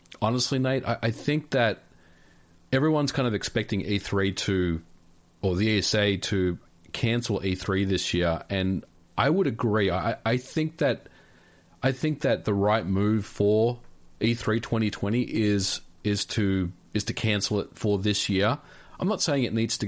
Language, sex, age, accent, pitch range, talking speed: English, male, 40-59, Australian, 90-115 Hz, 160 wpm